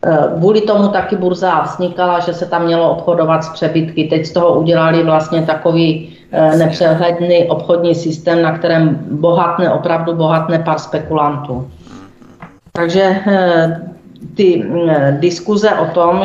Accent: native